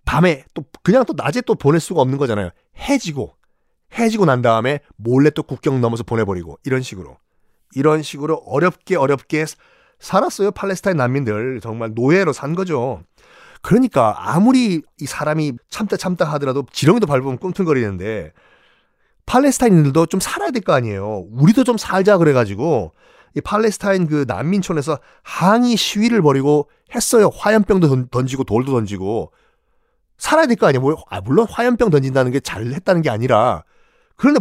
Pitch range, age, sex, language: 130-200 Hz, 30-49, male, Korean